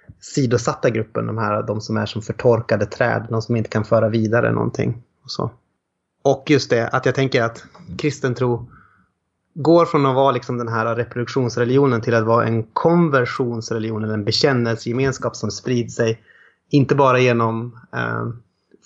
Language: Swedish